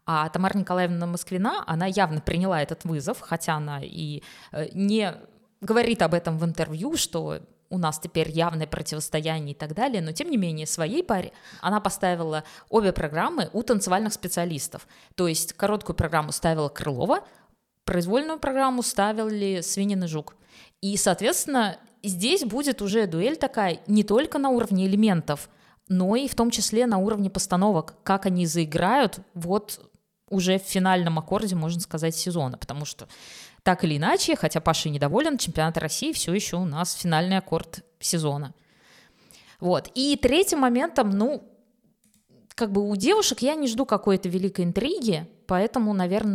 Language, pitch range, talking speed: Russian, 170-220 Hz, 150 wpm